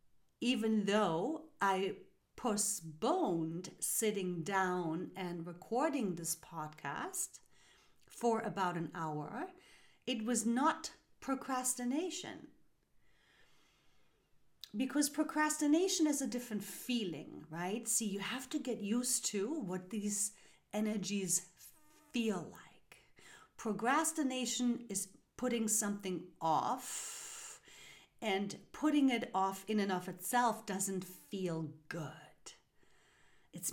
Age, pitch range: 40-59, 185-250 Hz